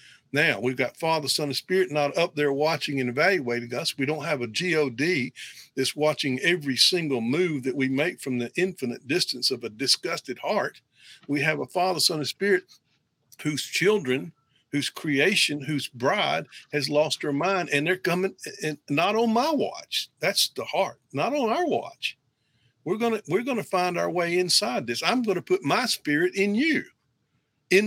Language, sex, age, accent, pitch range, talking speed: English, male, 50-69, American, 135-185 Hz, 180 wpm